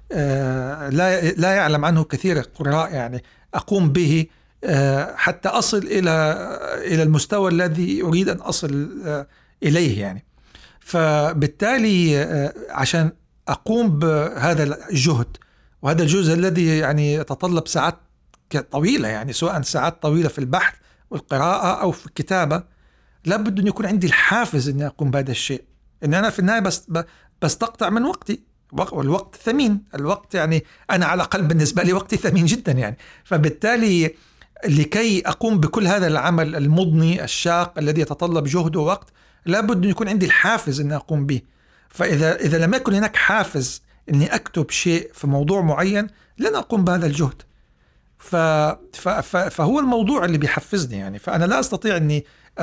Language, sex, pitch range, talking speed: Arabic, male, 150-190 Hz, 135 wpm